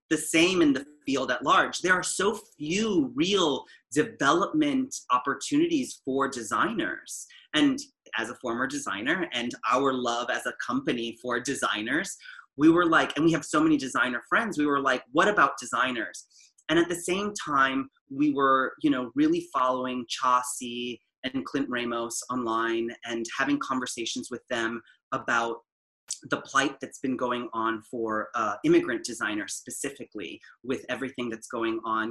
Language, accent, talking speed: English, American, 155 wpm